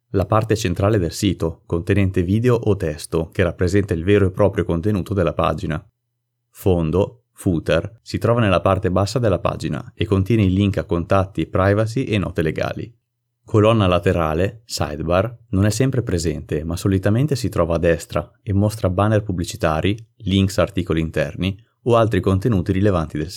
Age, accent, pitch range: 30-49, native, 85-110 Hz